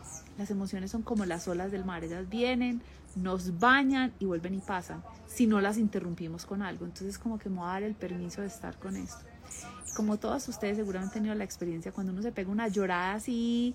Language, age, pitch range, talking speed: Spanish, 30-49, 175-220 Hz, 215 wpm